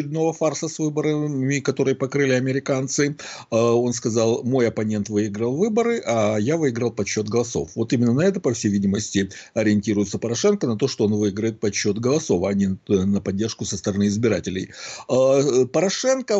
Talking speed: 150 wpm